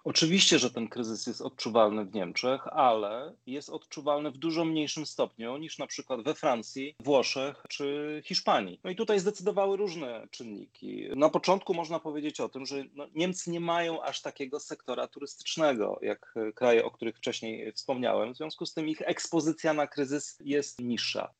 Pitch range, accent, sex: 125-165 Hz, native, male